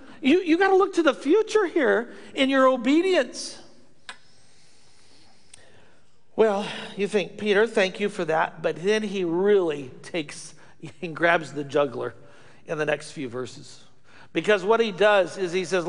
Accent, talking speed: American, 155 wpm